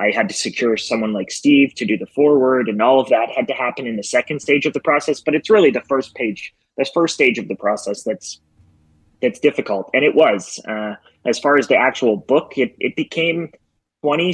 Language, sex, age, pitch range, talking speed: English, male, 20-39, 110-135 Hz, 225 wpm